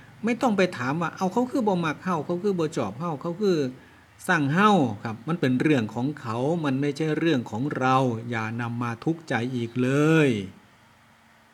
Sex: male